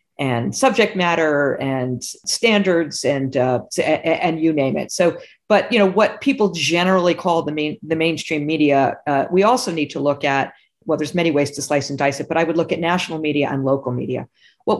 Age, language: 50-69, English